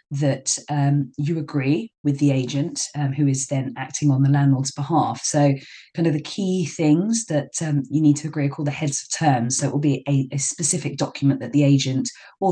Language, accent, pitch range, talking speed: English, British, 140-155 Hz, 220 wpm